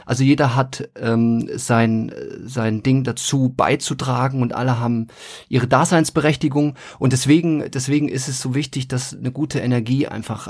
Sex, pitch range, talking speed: male, 120-135 Hz, 150 wpm